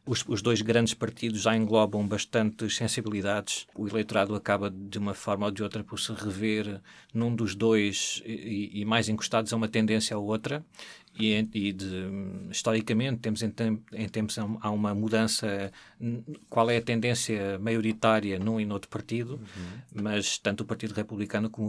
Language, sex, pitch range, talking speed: Portuguese, male, 105-115 Hz, 165 wpm